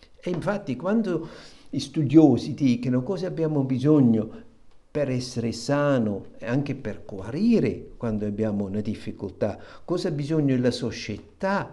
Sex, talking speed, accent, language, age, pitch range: male, 130 wpm, native, Italian, 60-79, 110-165 Hz